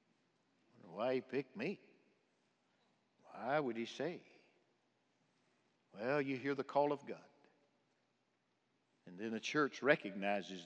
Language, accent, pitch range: English, American, 125-175 Hz